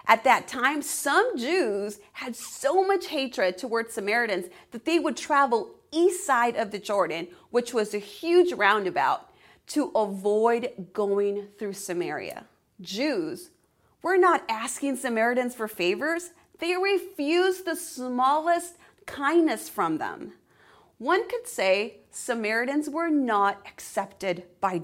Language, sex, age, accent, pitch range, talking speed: English, female, 30-49, American, 210-330 Hz, 125 wpm